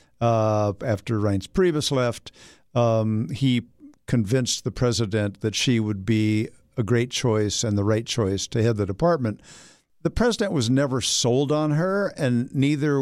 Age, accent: 50-69, American